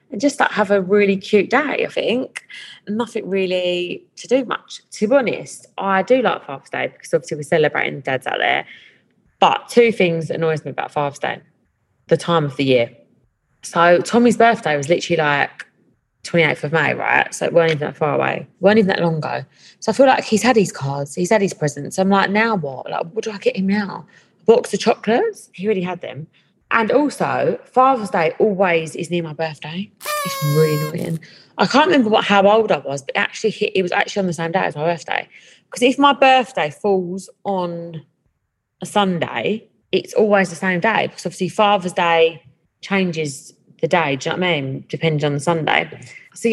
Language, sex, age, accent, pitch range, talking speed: English, female, 20-39, British, 165-210 Hz, 215 wpm